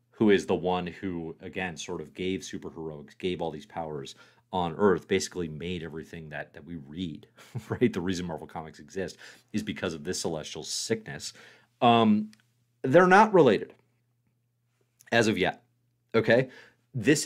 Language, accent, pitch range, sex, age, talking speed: English, American, 100-150 Hz, male, 40-59, 155 wpm